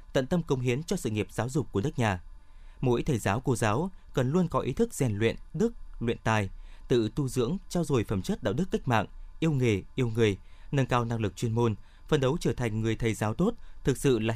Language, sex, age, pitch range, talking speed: Vietnamese, male, 20-39, 110-150 Hz, 245 wpm